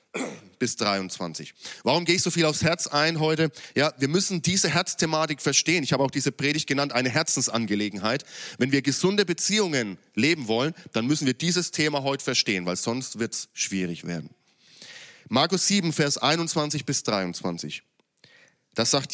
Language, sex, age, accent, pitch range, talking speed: German, male, 30-49, German, 120-165 Hz, 165 wpm